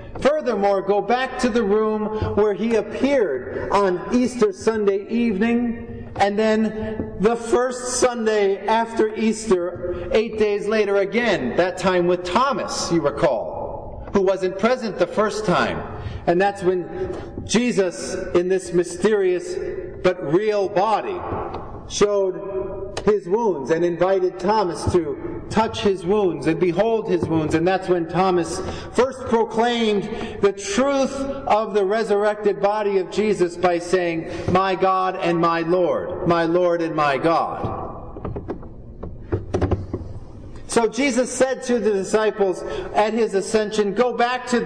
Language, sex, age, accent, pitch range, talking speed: English, male, 40-59, American, 185-230 Hz, 130 wpm